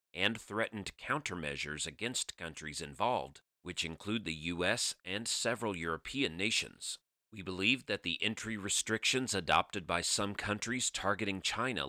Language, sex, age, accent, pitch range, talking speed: English, male, 40-59, American, 80-110 Hz, 130 wpm